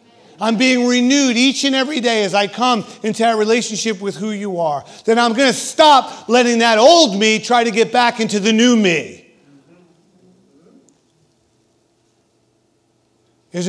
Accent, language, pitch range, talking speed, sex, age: American, English, 195-250 Hz, 150 wpm, male, 40-59